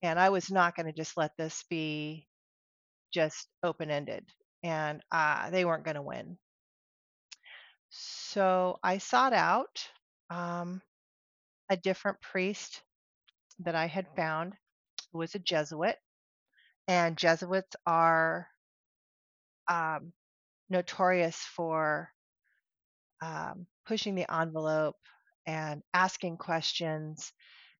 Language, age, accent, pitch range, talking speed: English, 40-59, American, 155-190 Hz, 105 wpm